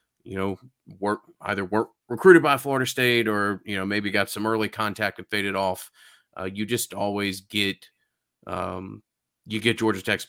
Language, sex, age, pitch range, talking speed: English, male, 30-49, 95-110 Hz, 175 wpm